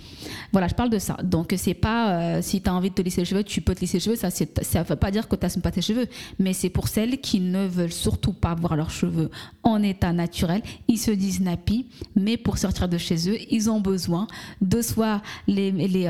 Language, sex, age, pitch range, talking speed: French, female, 20-39, 180-220 Hz, 255 wpm